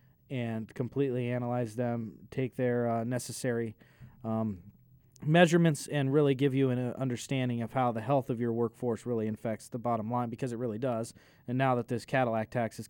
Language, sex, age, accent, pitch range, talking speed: English, male, 20-39, American, 115-130 Hz, 180 wpm